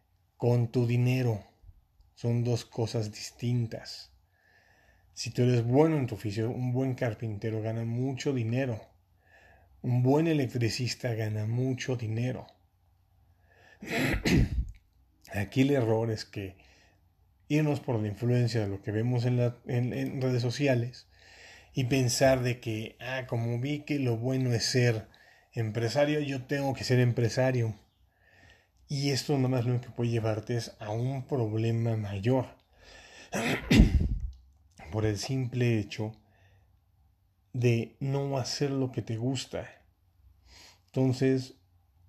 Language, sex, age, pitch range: English, male, 30-49, 95-125 Hz